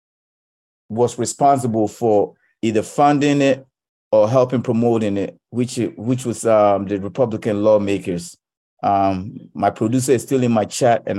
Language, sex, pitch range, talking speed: English, male, 110-130 Hz, 140 wpm